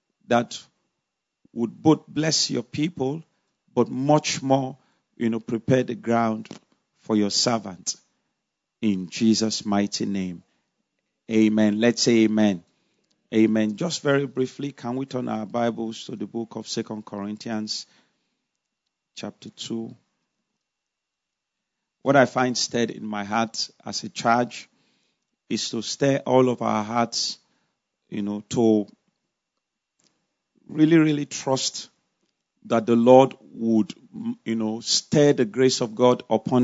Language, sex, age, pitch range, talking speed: English, male, 40-59, 110-140 Hz, 125 wpm